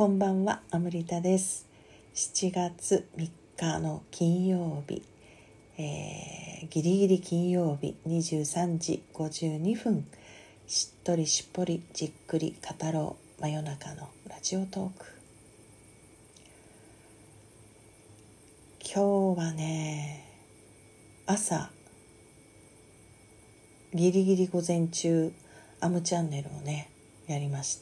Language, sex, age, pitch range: Japanese, female, 40-59, 135-175 Hz